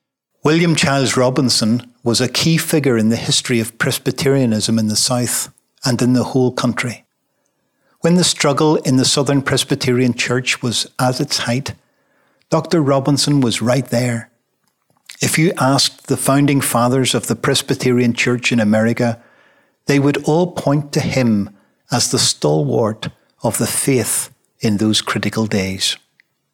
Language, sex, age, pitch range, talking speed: English, male, 60-79, 115-140 Hz, 145 wpm